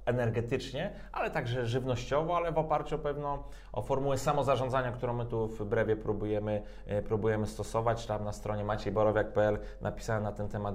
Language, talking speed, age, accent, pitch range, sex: Polish, 150 wpm, 30-49, native, 110-145 Hz, male